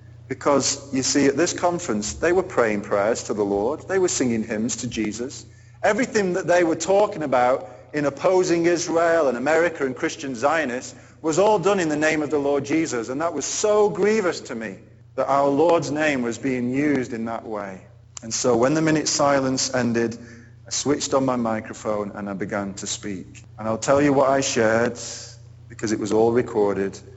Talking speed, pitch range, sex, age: 195 wpm, 115-160 Hz, male, 40-59